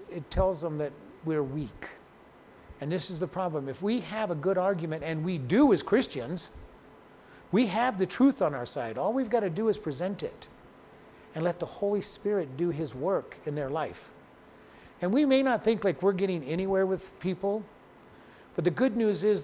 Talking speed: 200 wpm